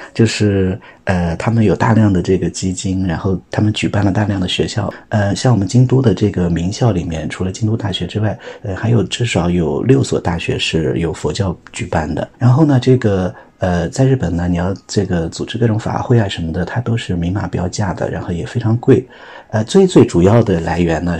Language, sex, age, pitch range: Chinese, male, 50-69, 90-120 Hz